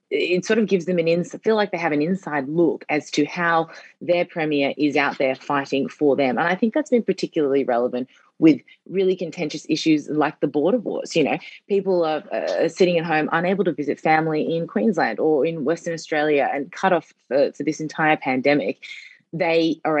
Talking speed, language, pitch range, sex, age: 205 wpm, English, 140-170 Hz, female, 20-39